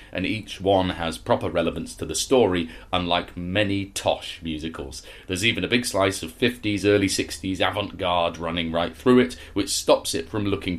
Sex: male